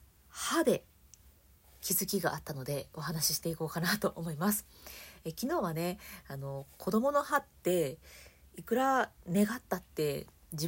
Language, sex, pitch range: Japanese, female, 165-220 Hz